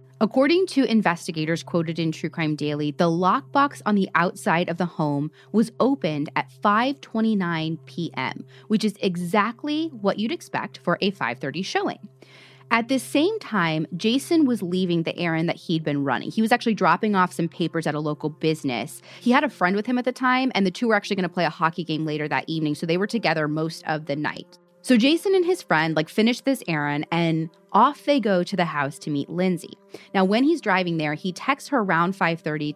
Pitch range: 160-230 Hz